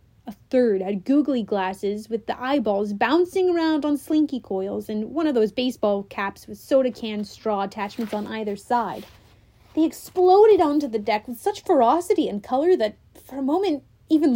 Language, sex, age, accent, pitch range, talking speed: English, female, 30-49, American, 215-315 Hz, 175 wpm